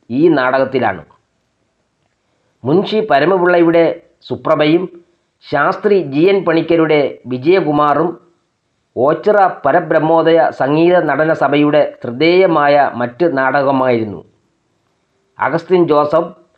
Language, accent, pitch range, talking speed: English, Indian, 150-175 Hz, 80 wpm